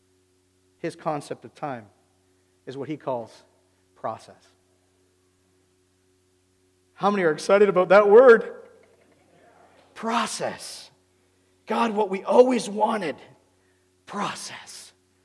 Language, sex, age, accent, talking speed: English, male, 40-59, American, 90 wpm